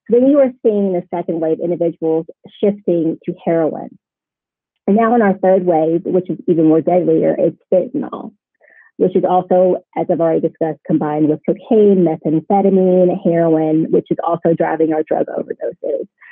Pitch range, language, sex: 170-195 Hz, English, female